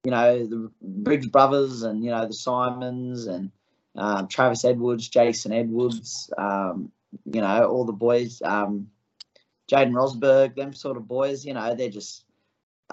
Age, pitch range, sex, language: 20-39, 120-140 Hz, male, English